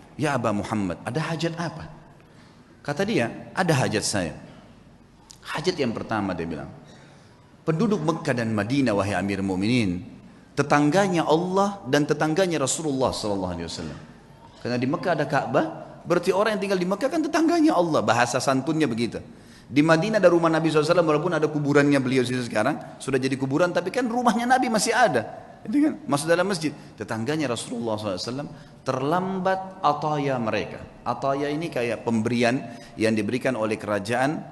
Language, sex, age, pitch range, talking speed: Indonesian, male, 30-49, 110-160 Hz, 145 wpm